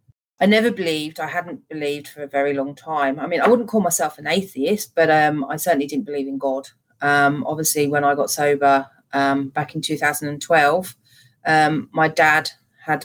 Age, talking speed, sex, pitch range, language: 30-49, 190 wpm, female, 140-160 Hz, English